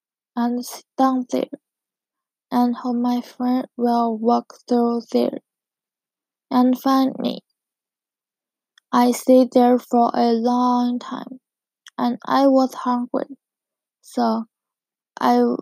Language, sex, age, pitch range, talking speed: English, female, 10-29, 240-260 Hz, 110 wpm